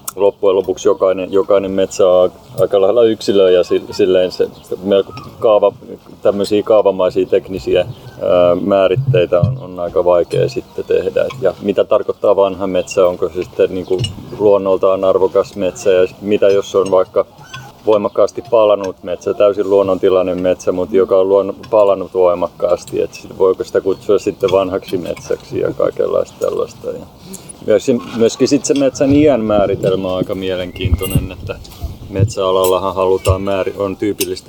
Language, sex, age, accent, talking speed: Finnish, male, 30-49, native, 130 wpm